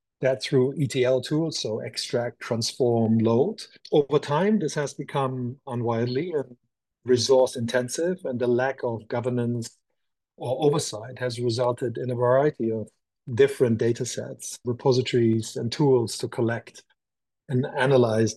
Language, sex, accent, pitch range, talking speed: English, male, German, 120-140 Hz, 130 wpm